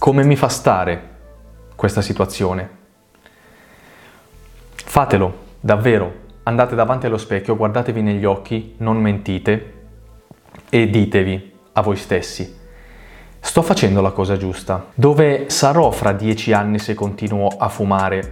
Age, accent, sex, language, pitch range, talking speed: 20-39, native, male, Italian, 100-115 Hz, 120 wpm